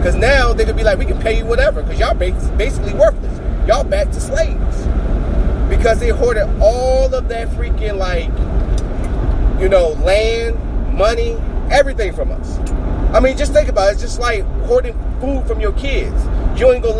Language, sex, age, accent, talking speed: English, male, 30-49, American, 180 wpm